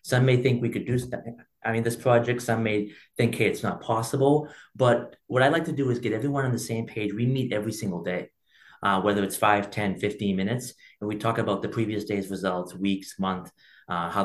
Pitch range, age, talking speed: 100-130 Hz, 30-49, 230 wpm